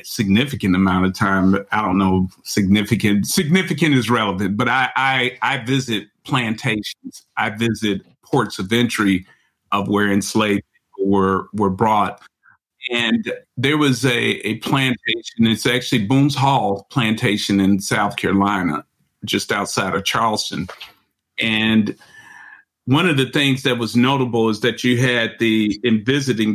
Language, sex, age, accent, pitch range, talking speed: English, male, 50-69, American, 100-130 Hz, 140 wpm